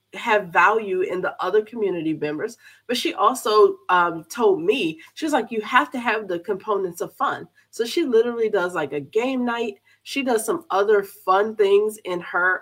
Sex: female